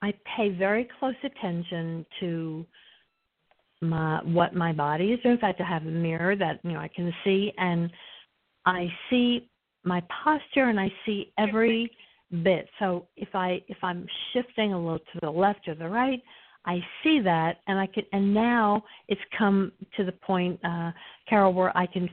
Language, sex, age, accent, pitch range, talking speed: English, female, 50-69, American, 170-215 Hz, 180 wpm